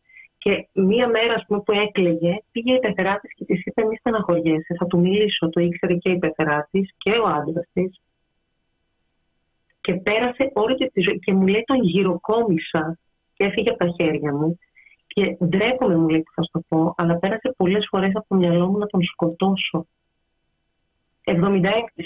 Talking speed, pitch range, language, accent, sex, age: 170 wpm, 170-225 Hz, Greek, native, female, 30-49